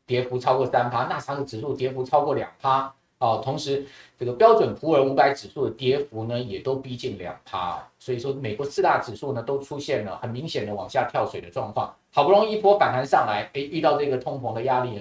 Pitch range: 130-215 Hz